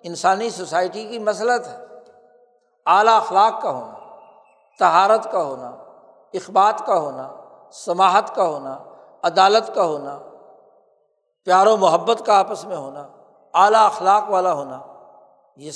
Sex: male